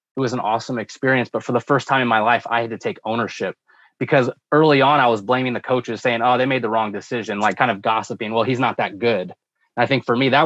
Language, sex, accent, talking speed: English, male, American, 270 wpm